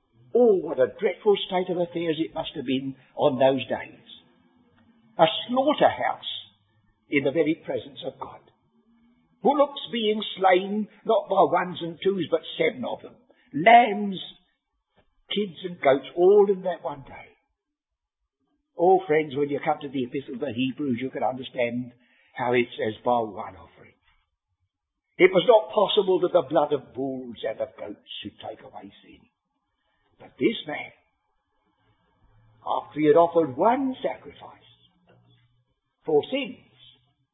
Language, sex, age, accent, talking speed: English, male, 60-79, British, 145 wpm